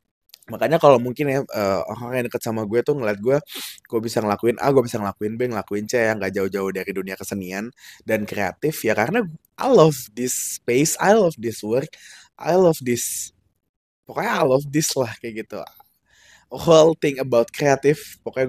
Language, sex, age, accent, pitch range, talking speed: Indonesian, male, 20-39, native, 110-145 Hz, 180 wpm